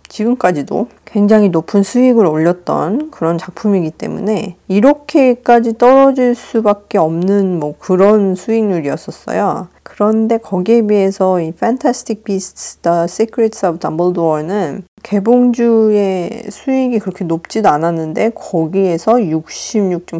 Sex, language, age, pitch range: female, Korean, 40-59, 165-225 Hz